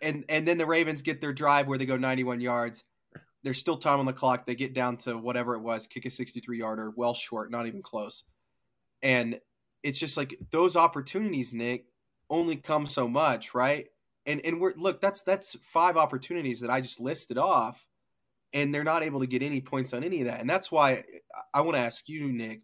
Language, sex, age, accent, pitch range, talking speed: English, male, 20-39, American, 120-150 Hz, 215 wpm